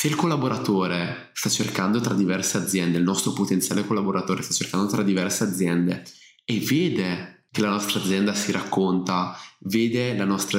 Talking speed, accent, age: 160 wpm, native, 20-39